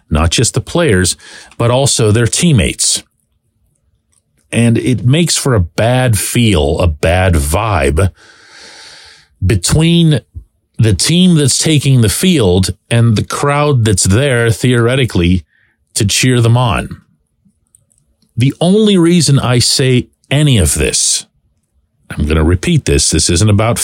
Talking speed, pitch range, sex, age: 130 wpm, 85-130 Hz, male, 40-59